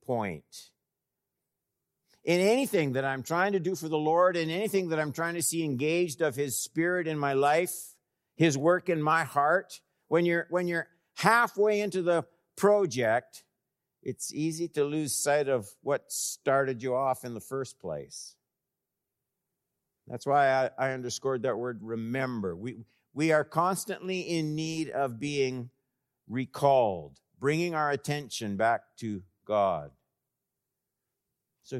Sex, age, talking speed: male, 60-79, 140 wpm